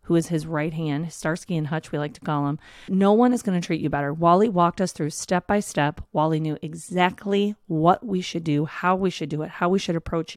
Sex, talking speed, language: female, 245 wpm, English